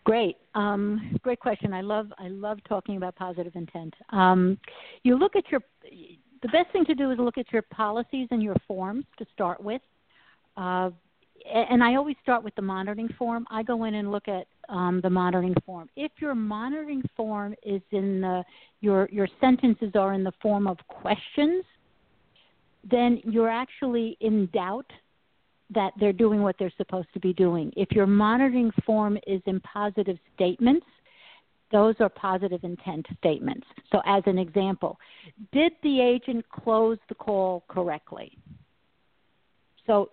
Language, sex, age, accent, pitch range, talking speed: English, female, 50-69, American, 190-235 Hz, 160 wpm